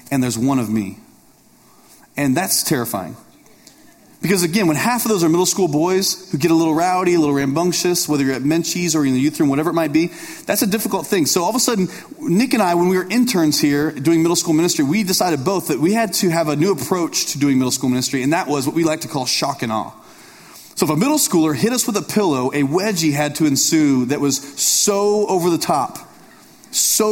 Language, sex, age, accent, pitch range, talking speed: English, male, 30-49, American, 140-200 Hz, 240 wpm